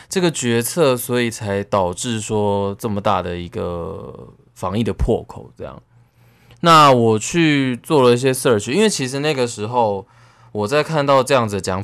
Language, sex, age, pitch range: Chinese, male, 20-39, 100-130 Hz